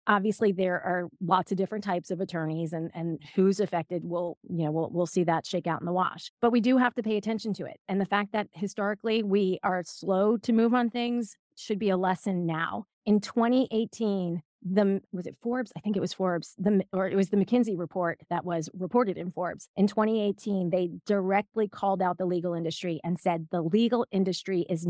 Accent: American